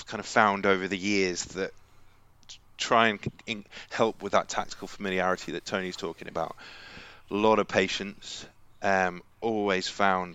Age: 20-39